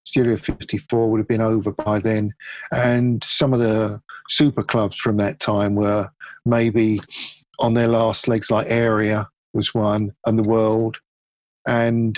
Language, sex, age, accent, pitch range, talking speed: English, male, 50-69, British, 105-120 Hz, 155 wpm